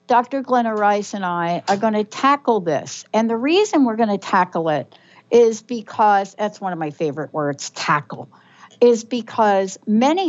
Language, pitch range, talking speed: English, 180-230 Hz, 165 wpm